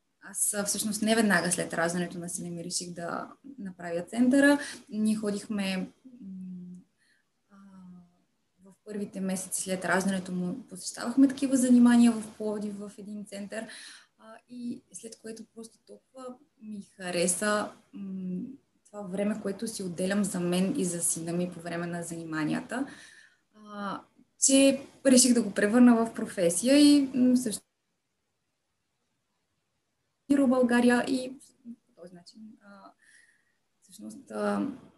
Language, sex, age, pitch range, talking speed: Bulgarian, female, 20-39, 185-240 Hz, 125 wpm